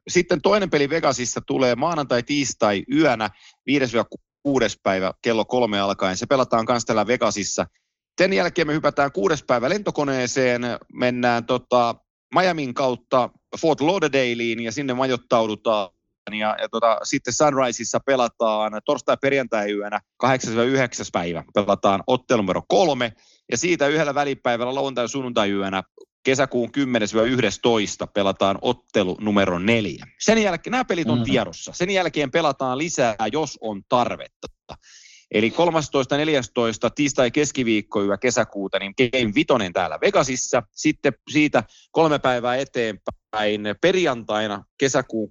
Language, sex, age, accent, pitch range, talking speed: Finnish, male, 30-49, native, 110-145 Hz, 120 wpm